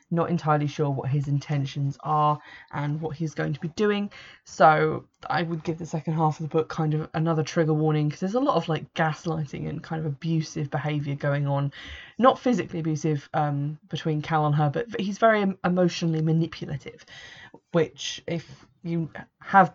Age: 20-39